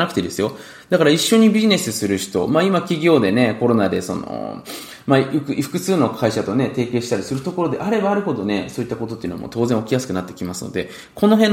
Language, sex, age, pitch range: Japanese, male, 20-39, 105-170 Hz